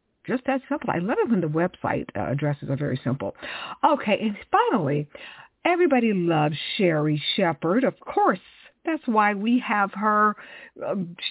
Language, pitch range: English, 175-270 Hz